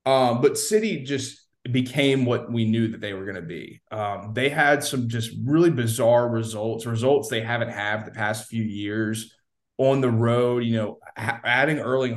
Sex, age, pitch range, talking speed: male, 20-39, 110-125 Hz, 180 wpm